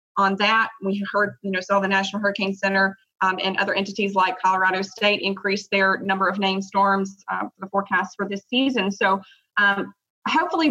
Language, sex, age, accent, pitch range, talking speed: English, female, 20-39, American, 195-220 Hz, 190 wpm